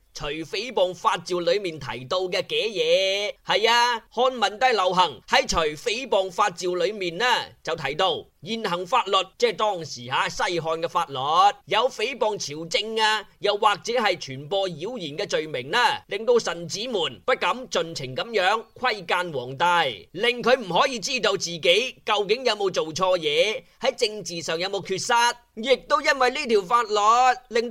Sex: male